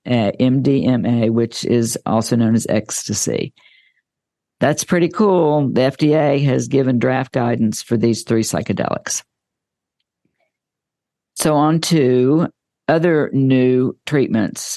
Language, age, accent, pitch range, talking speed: English, 50-69, American, 115-140 Hz, 105 wpm